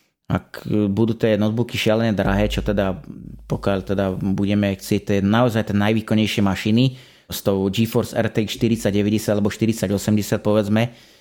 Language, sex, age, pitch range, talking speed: Slovak, male, 30-49, 105-120 Hz, 130 wpm